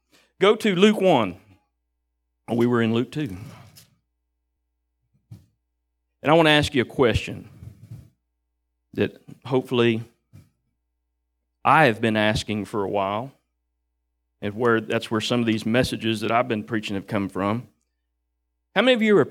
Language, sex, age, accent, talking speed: English, male, 40-59, American, 145 wpm